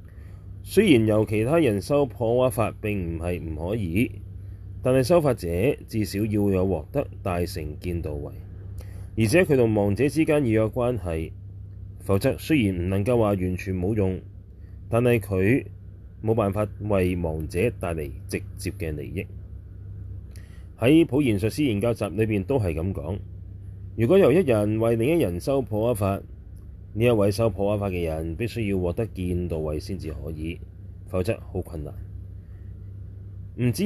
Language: Chinese